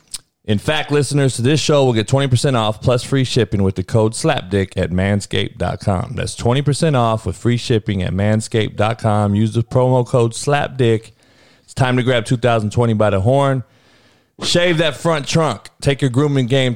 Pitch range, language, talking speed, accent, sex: 100-130 Hz, English, 175 wpm, American, male